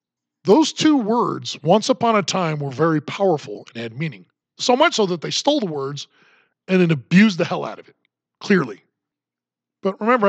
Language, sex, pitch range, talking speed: English, male, 165-250 Hz, 185 wpm